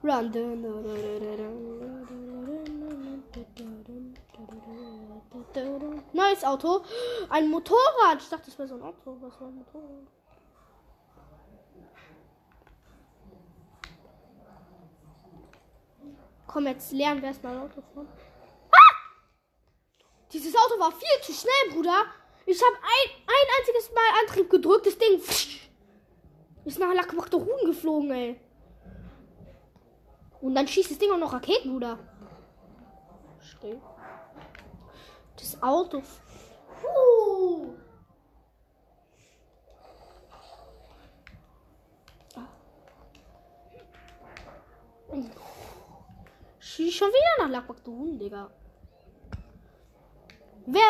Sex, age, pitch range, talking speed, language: female, 20-39, 250-360 Hz, 85 wpm, English